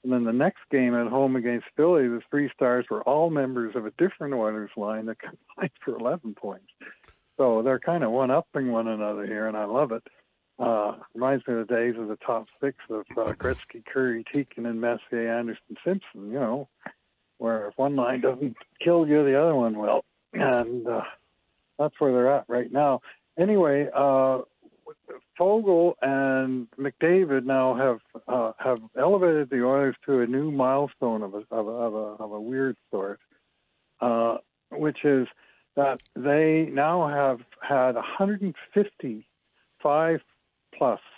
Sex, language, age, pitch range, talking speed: male, English, 60-79, 115-140 Hz, 160 wpm